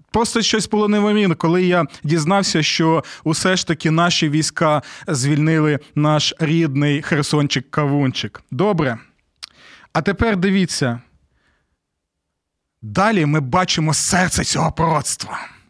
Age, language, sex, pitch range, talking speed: 30-49, Ukrainian, male, 155-205 Hz, 105 wpm